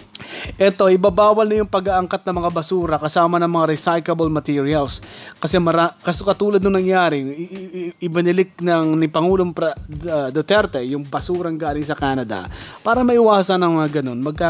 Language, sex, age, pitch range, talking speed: Filipino, male, 20-39, 145-180 Hz, 160 wpm